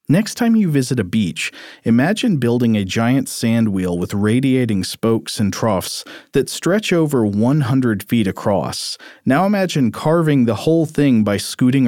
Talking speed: 155 wpm